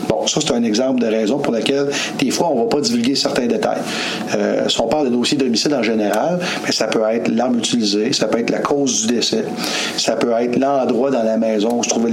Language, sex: French, male